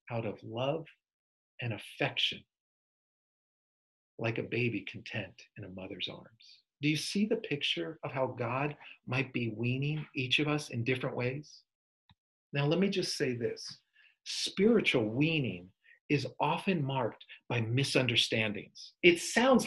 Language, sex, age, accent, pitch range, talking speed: English, male, 40-59, American, 130-215 Hz, 135 wpm